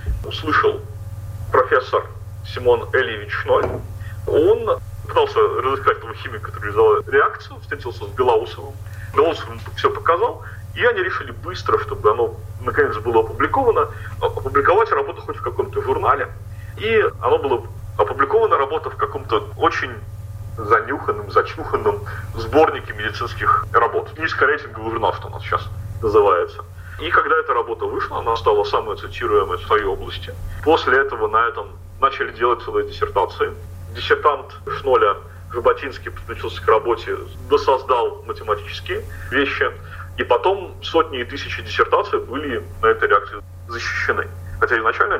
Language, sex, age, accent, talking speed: Russian, male, 40-59, native, 125 wpm